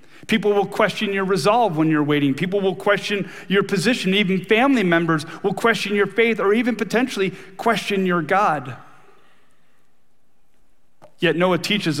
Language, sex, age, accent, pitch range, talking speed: English, male, 40-59, American, 145-175 Hz, 145 wpm